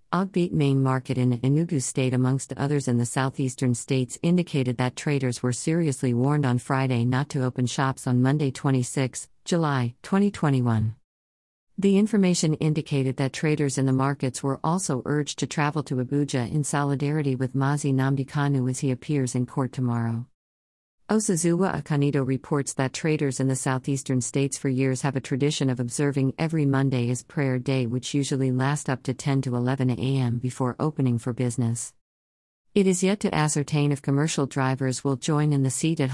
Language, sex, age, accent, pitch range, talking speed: English, female, 50-69, American, 125-150 Hz, 170 wpm